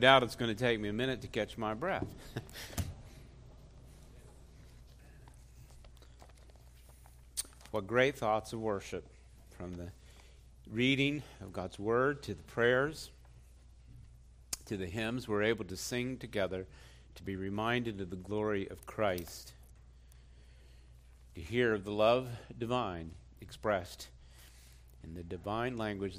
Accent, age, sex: American, 50-69, male